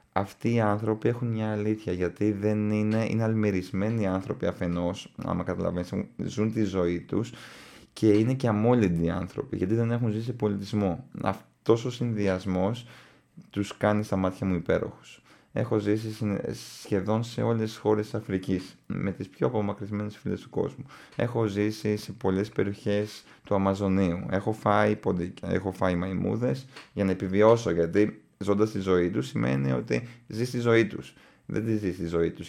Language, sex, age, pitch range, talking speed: Greek, male, 20-39, 95-115 Hz, 160 wpm